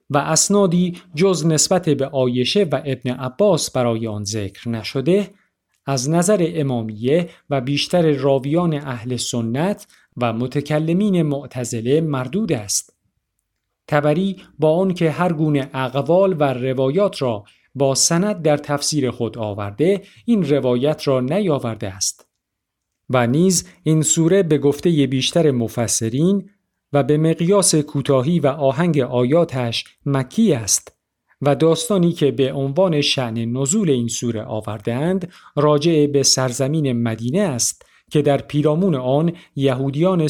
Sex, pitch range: male, 125-170 Hz